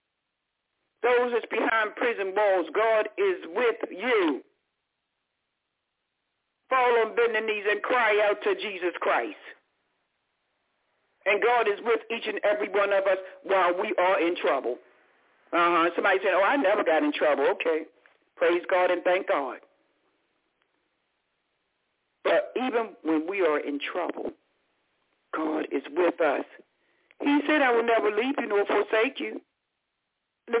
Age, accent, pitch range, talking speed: 60-79, American, 190-300 Hz, 140 wpm